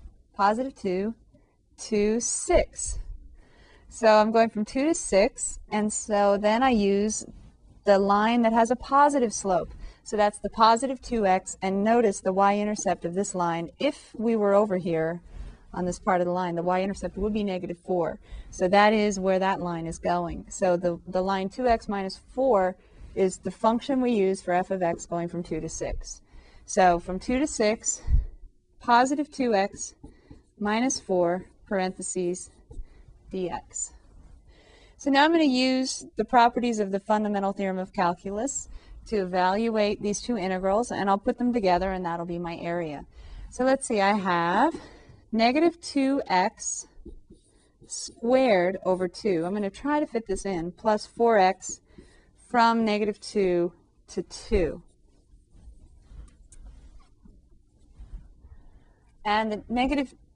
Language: English